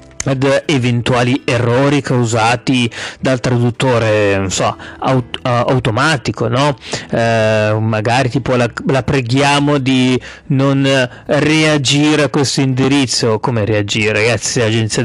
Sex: male